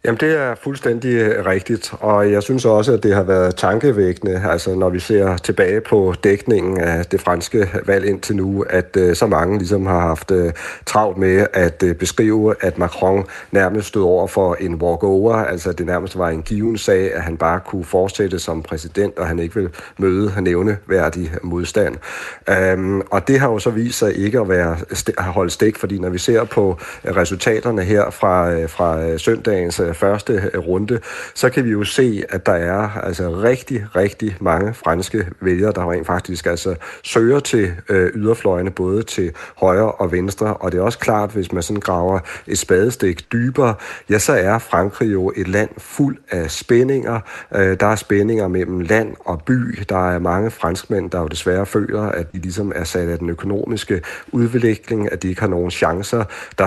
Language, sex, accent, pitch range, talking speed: Danish, male, native, 90-110 Hz, 180 wpm